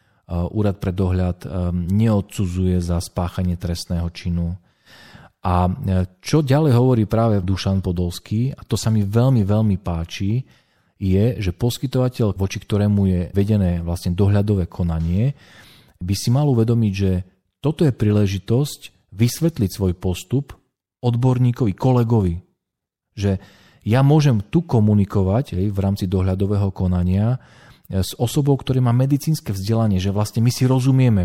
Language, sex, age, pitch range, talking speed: Slovak, male, 40-59, 95-120 Hz, 125 wpm